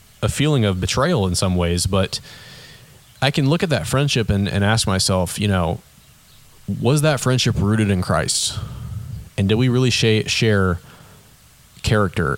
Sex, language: male, English